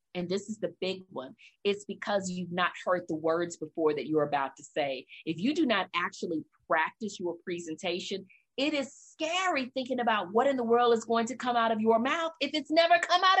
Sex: female